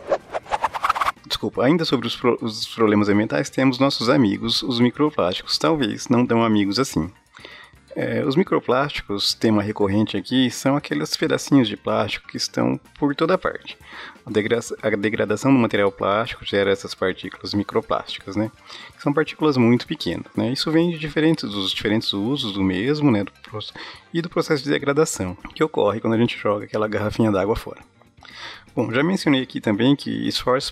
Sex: male